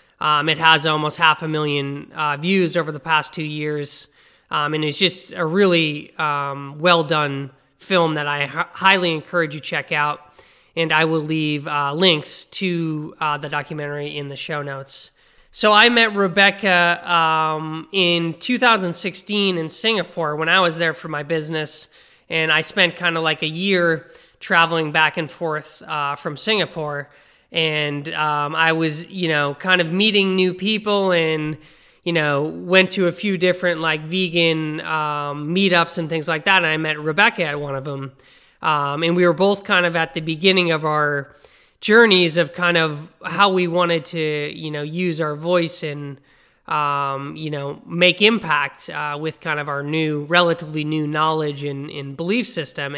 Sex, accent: male, American